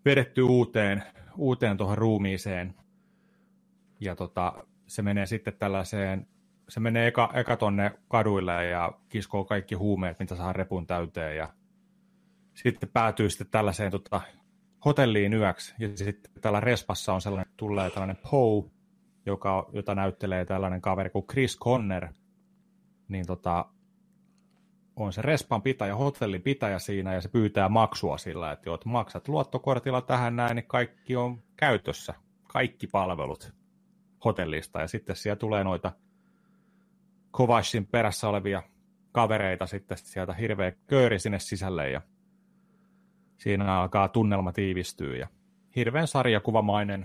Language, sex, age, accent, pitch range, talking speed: Finnish, male, 30-49, native, 95-135 Hz, 130 wpm